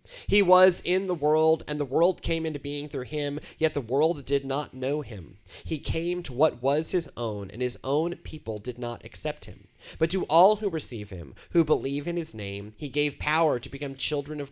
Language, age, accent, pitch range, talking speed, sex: English, 30-49, American, 120-155 Hz, 220 wpm, male